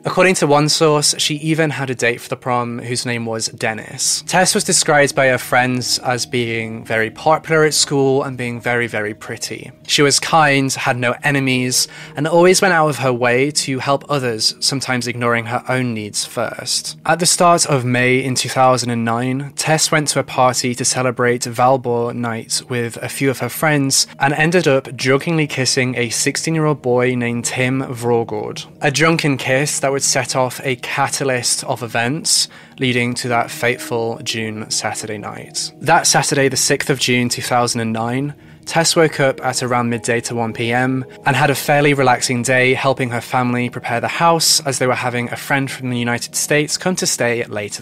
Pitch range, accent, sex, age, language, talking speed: 120-150 Hz, British, male, 20-39, English, 190 wpm